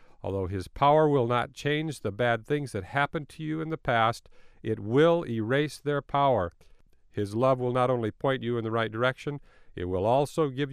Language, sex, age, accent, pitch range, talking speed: English, male, 50-69, American, 105-140 Hz, 200 wpm